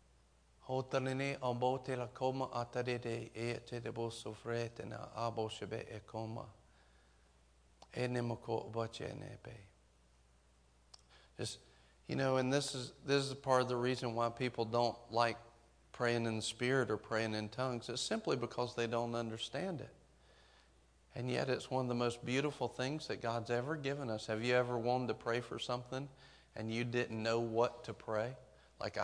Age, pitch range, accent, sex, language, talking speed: 40-59, 110-130 Hz, American, male, English, 125 wpm